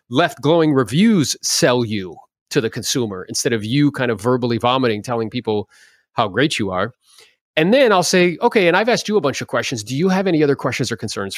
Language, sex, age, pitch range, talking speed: English, male, 30-49, 120-165 Hz, 220 wpm